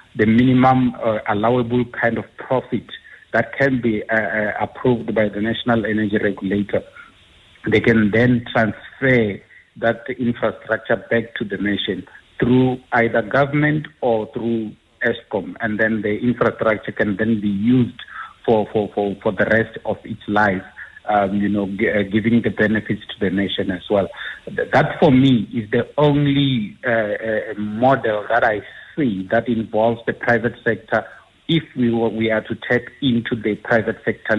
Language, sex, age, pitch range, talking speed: English, male, 50-69, 105-120 Hz, 155 wpm